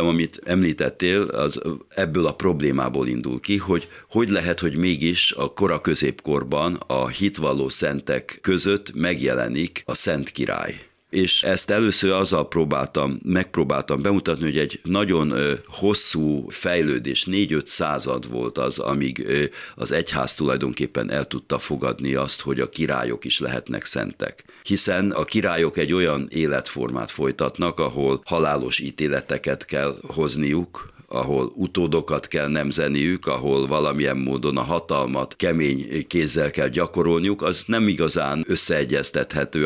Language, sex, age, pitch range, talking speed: Hungarian, male, 60-79, 70-95 Hz, 125 wpm